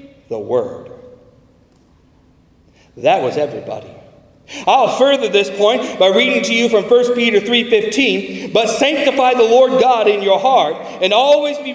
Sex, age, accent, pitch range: male, 40-59, American, 210-275 Hz